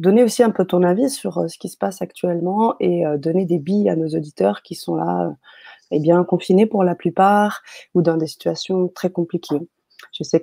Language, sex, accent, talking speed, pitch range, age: French, female, French, 215 wpm, 170-215 Hz, 30-49